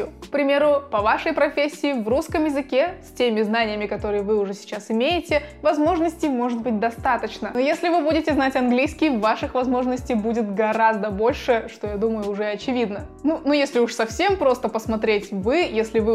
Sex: female